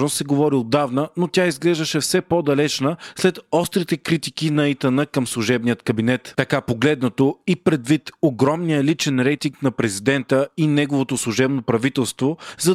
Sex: male